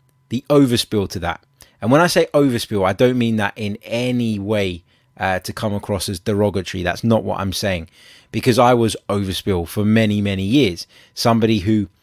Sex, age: male, 20-39